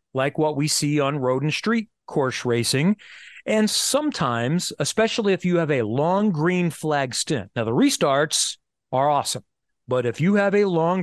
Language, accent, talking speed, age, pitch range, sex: English, American, 175 wpm, 40-59, 130-170 Hz, male